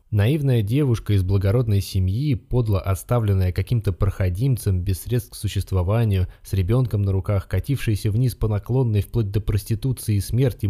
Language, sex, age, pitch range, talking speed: Russian, male, 20-39, 95-120 Hz, 145 wpm